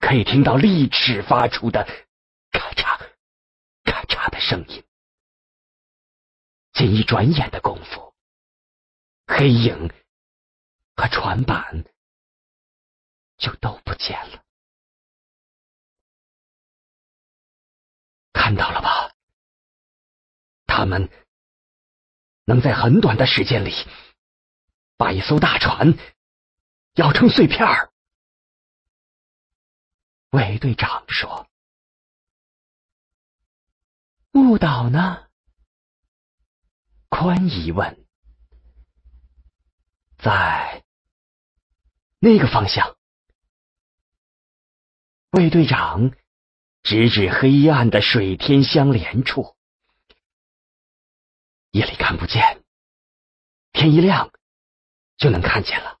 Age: 40-59